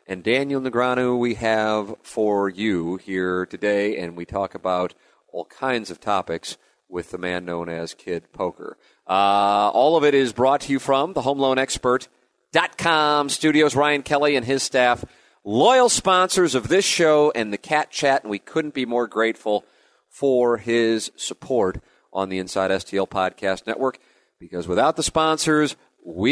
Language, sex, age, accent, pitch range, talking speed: English, male, 40-59, American, 100-140 Hz, 160 wpm